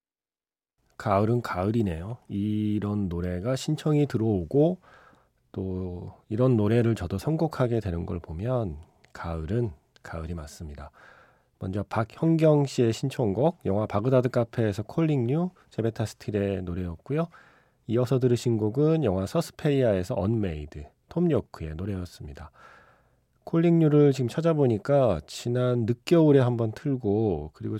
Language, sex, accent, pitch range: Korean, male, native, 95-130 Hz